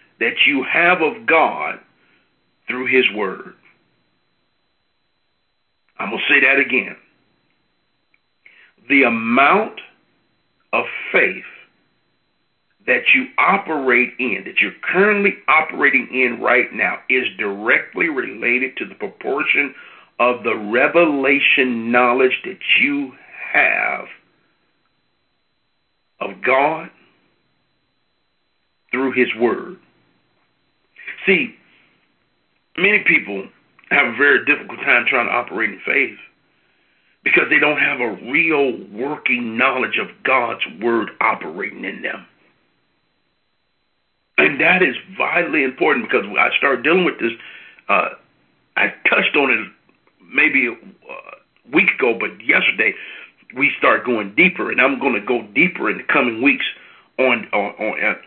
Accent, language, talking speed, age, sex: American, English, 115 wpm, 50-69, male